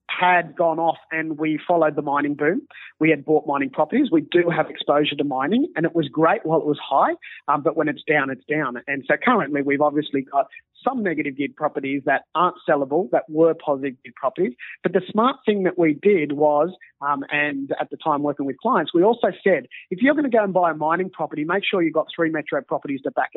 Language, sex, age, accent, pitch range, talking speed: English, male, 30-49, Australian, 150-195 Hz, 235 wpm